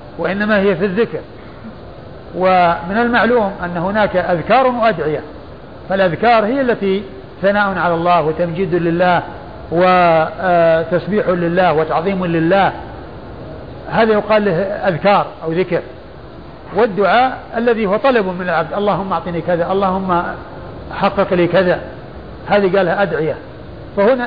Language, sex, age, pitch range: Arabic, male, 50-69, 175-225 Hz